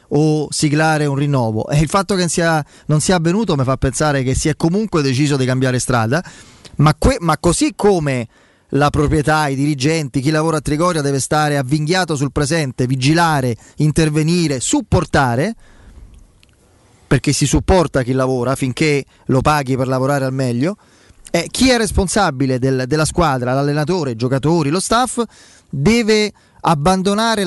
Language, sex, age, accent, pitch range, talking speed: Italian, male, 20-39, native, 140-180 Hz, 145 wpm